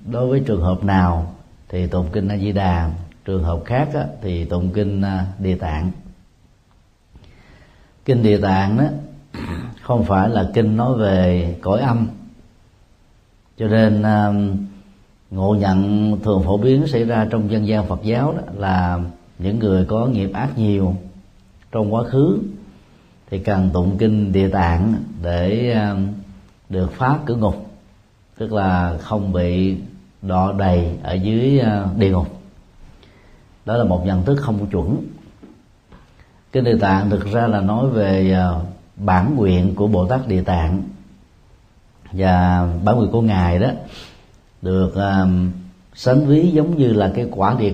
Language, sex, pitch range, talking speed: Vietnamese, male, 90-110 Hz, 145 wpm